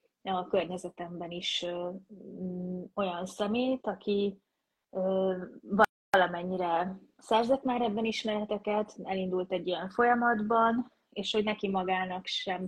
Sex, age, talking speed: female, 20-39, 95 wpm